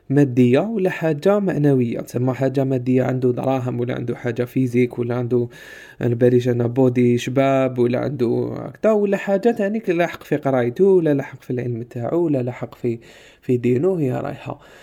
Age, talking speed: 20-39, 160 wpm